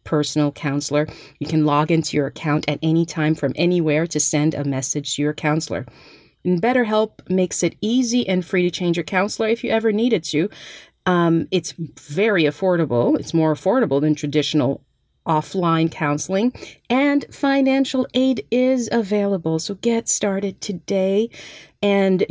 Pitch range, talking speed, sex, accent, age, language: 150-215 Hz, 155 wpm, female, American, 40-59, English